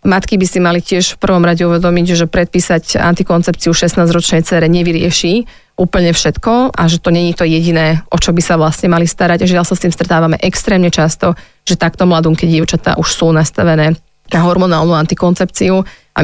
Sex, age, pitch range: female, 30-49, 165-180 Hz